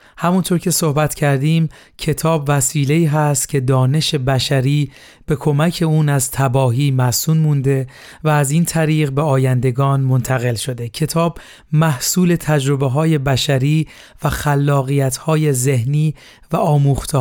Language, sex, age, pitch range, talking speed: Persian, male, 40-59, 135-160 Hz, 125 wpm